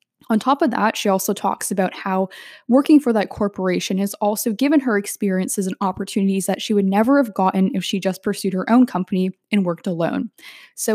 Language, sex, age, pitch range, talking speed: English, female, 10-29, 185-215 Hz, 205 wpm